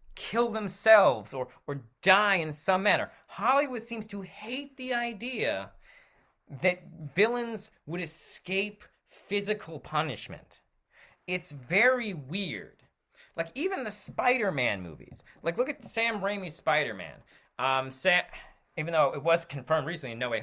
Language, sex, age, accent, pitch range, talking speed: English, male, 30-49, American, 145-200 Hz, 130 wpm